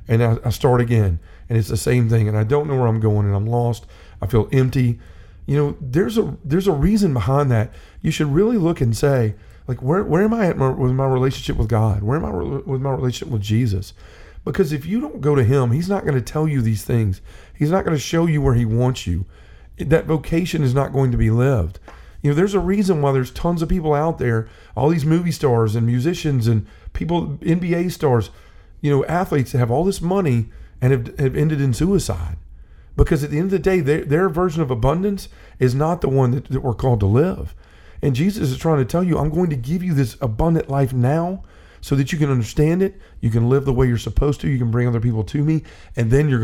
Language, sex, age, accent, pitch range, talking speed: English, male, 40-59, American, 115-155 Hz, 240 wpm